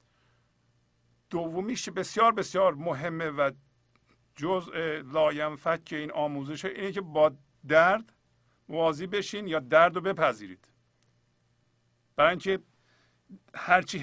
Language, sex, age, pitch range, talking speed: Persian, male, 50-69, 120-185 Hz, 105 wpm